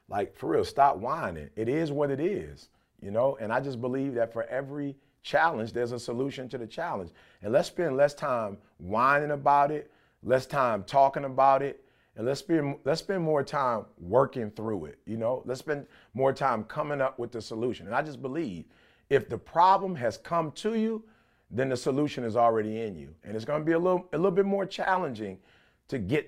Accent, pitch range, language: American, 110-150 Hz, English